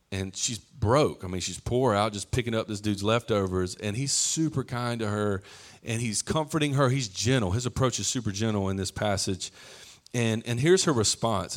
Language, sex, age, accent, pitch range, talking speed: English, male, 40-59, American, 105-140 Hz, 200 wpm